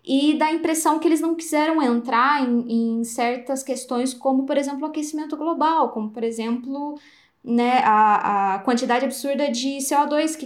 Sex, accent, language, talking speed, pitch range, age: female, Brazilian, Portuguese, 170 wpm, 220-285 Hz, 10-29